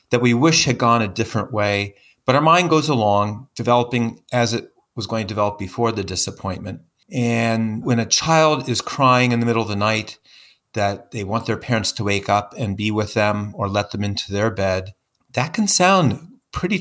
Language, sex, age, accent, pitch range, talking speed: English, male, 40-59, American, 105-140 Hz, 205 wpm